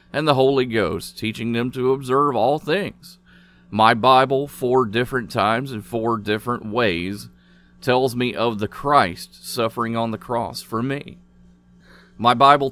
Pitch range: 90-130 Hz